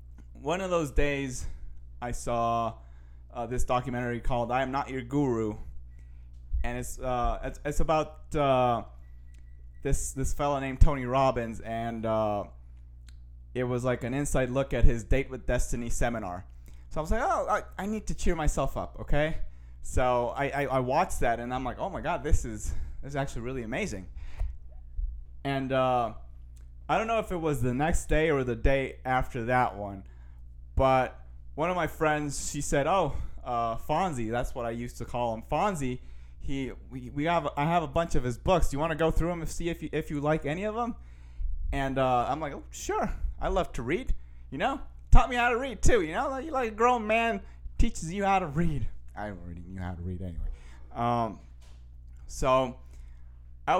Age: 20-39